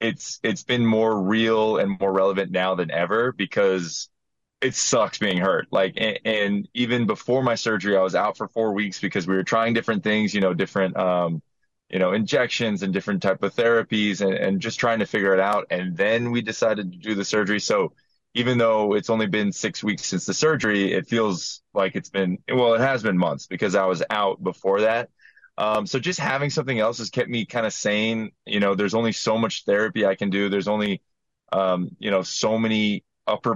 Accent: American